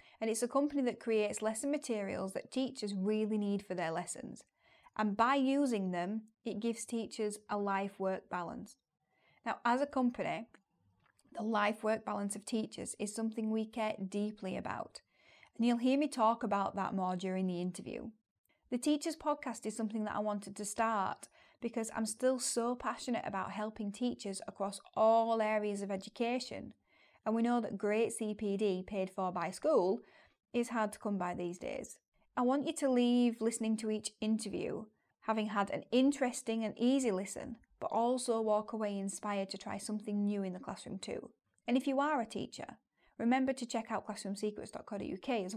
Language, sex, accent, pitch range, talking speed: English, female, British, 200-235 Hz, 175 wpm